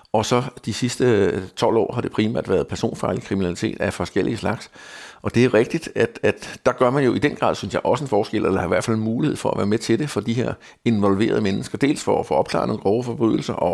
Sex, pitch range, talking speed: male, 100-120 Hz, 260 wpm